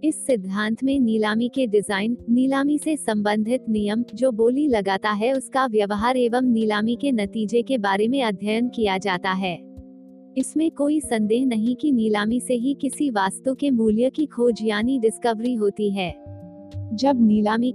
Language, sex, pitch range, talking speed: Hindi, female, 205-260 Hz, 160 wpm